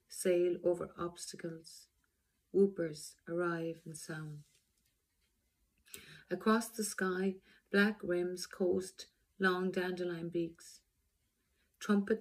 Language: English